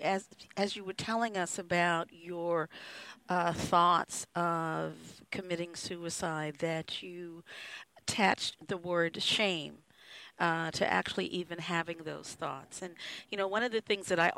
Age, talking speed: 50-69, 145 wpm